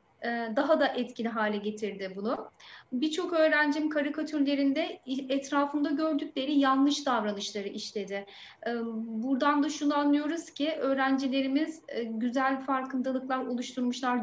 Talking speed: 95 wpm